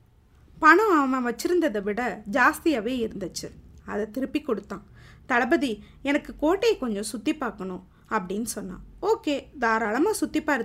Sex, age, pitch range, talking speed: female, 20-39, 225-310 Hz, 115 wpm